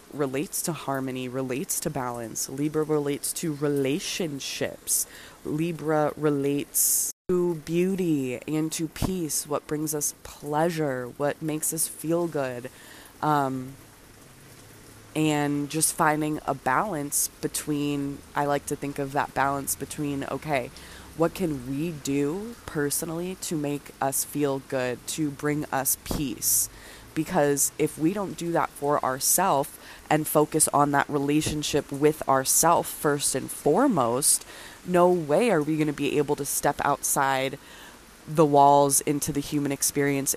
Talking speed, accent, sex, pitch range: 135 wpm, American, female, 135-155 Hz